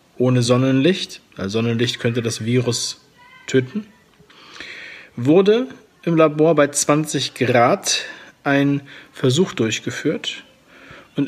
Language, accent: German, German